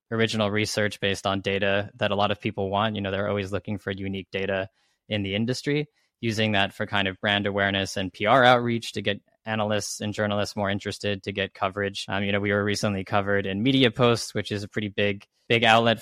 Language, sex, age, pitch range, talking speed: English, male, 20-39, 100-110 Hz, 220 wpm